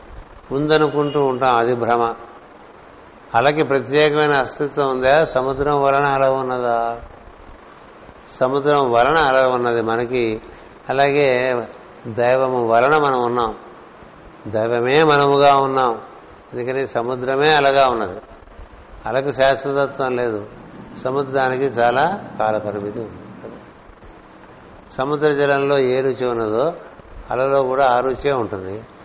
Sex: male